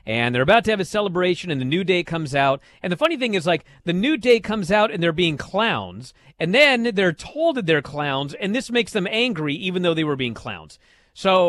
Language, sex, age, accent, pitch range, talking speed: English, male, 40-59, American, 140-205 Hz, 245 wpm